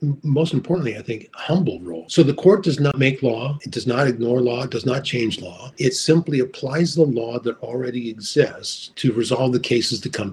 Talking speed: 215 wpm